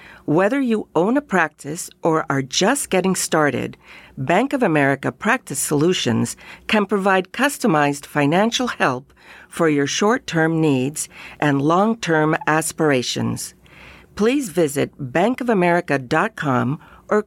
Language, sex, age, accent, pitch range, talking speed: English, female, 50-69, American, 150-215 Hz, 110 wpm